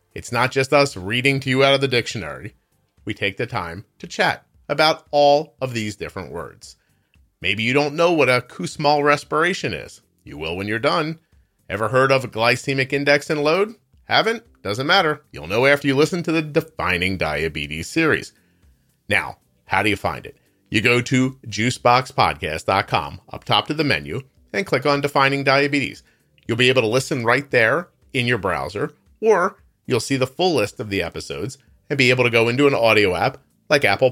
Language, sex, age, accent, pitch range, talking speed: English, male, 40-59, American, 100-145 Hz, 190 wpm